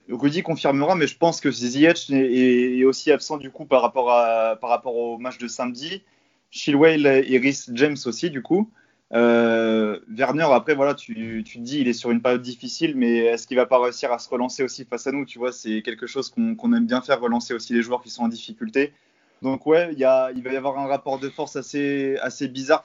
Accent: French